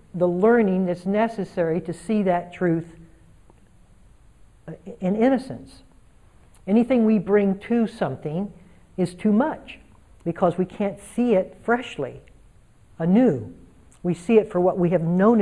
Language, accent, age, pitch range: English, American, 60-79, 145-200 Hz